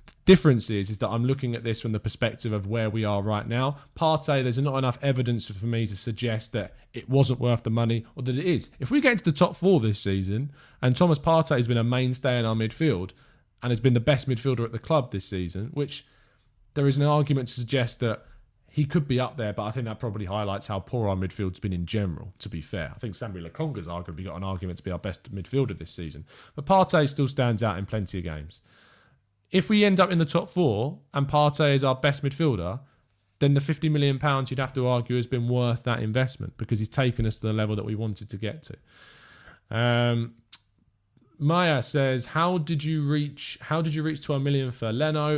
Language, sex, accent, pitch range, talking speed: English, male, British, 110-145 Hz, 230 wpm